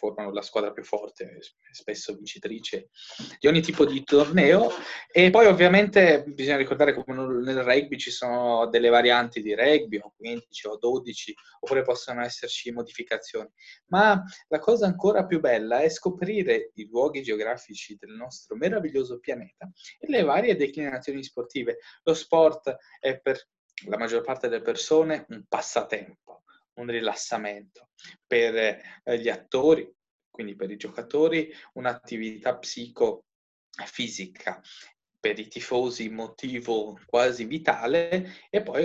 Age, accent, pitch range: 20-39, native, 120-190 Hz